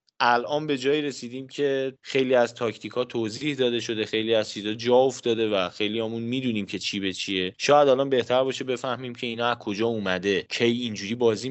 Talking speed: 195 wpm